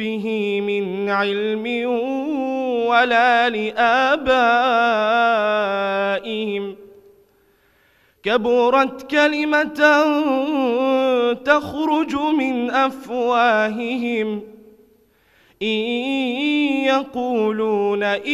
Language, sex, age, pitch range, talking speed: French, male, 20-39, 210-260 Hz, 35 wpm